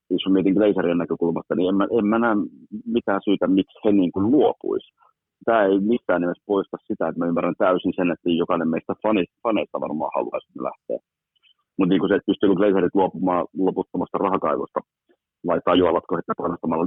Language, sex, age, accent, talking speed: Finnish, male, 30-49, native, 180 wpm